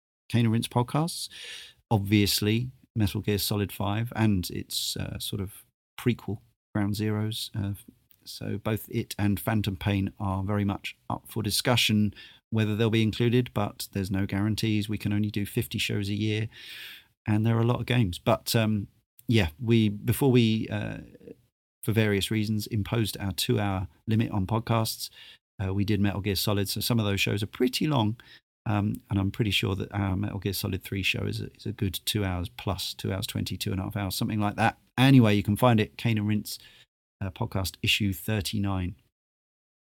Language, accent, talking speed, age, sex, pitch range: English, British, 190 wpm, 40-59, male, 100-115 Hz